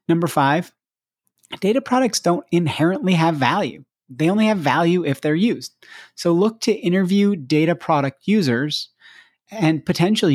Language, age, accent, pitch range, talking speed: English, 30-49, American, 130-175 Hz, 140 wpm